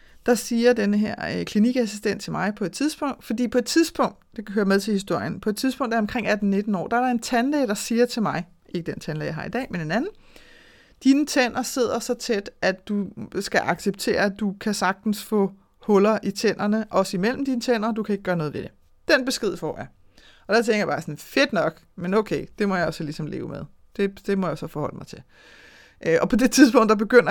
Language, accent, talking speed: Danish, native, 240 wpm